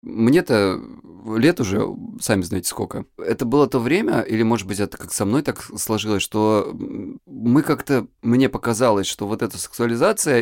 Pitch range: 100-120 Hz